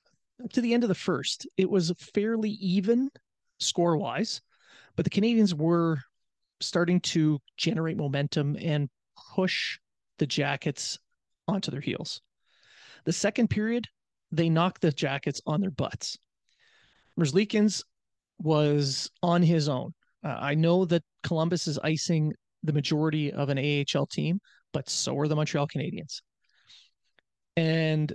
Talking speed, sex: 130 wpm, male